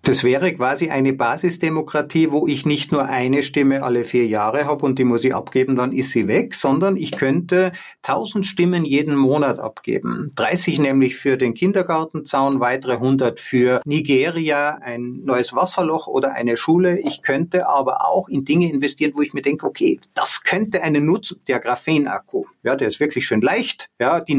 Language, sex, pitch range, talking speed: German, male, 135-165 Hz, 180 wpm